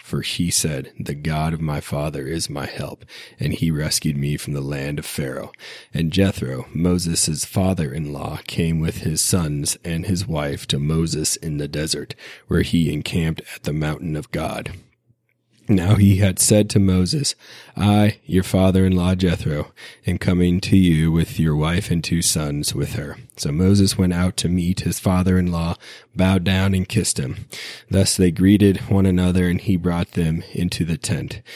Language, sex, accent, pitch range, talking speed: English, male, American, 80-95 Hz, 175 wpm